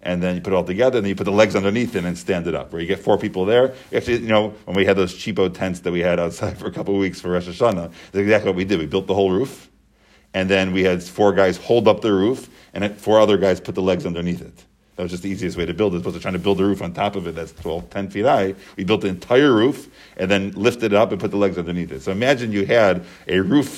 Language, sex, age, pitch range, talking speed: English, male, 40-59, 90-110 Hz, 310 wpm